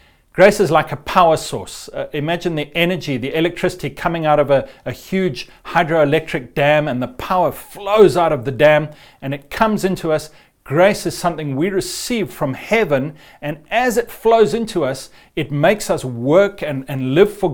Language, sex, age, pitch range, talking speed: English, male, 40-59, 135-185 Hz, 185 wpm